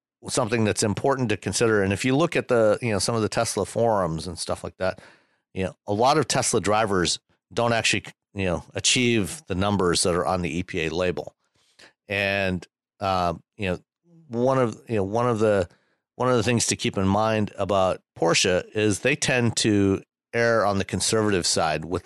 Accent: American